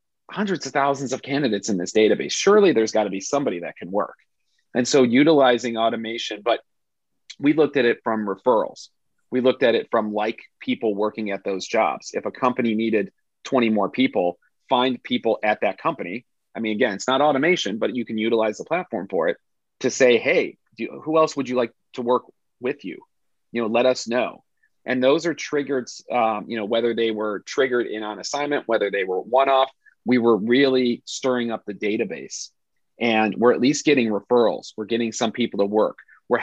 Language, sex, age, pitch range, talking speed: English, male, 30-49, 105-130 Hz, 195 wpm